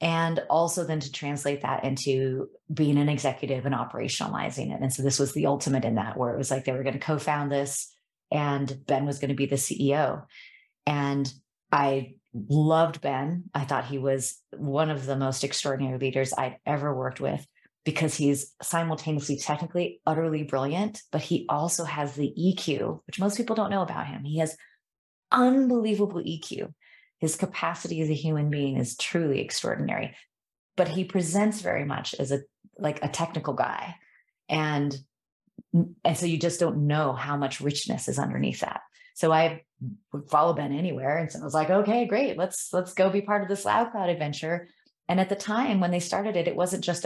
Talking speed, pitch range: 185 wpm, 140-175 Hz